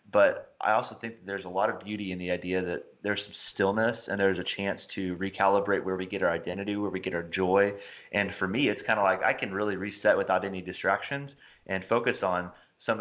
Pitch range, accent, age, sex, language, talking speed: 95-110 Hz, American, 30-49, male, English, 230 wpm